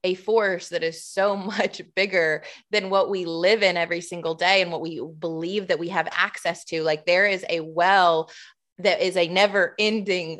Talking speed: 195 wpm